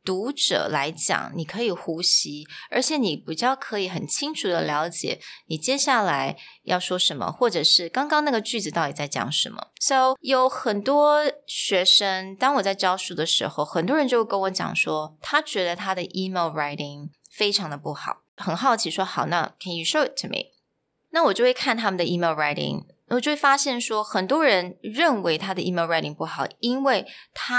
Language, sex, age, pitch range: Chinese, female, 20-39, 170-255 Hz